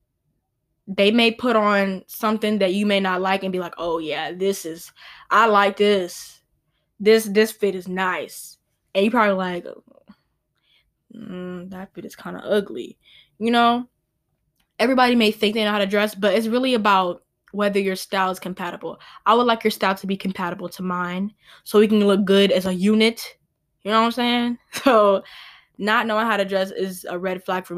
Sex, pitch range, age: female, 185-220 Hz, 10-29